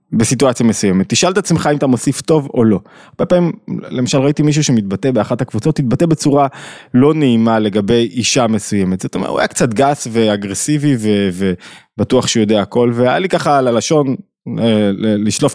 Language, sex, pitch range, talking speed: Hebrew, male, 110-150 Hz, 170 wpm